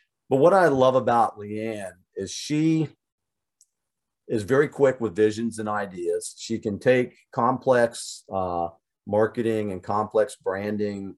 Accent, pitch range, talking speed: American, 95-120 Hz, 130 wpm